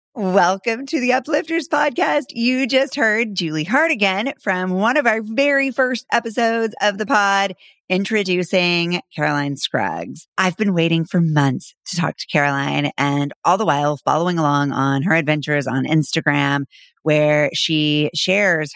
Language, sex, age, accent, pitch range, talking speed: English, female, 30-49, American, 150-200 Hz, 150 wpm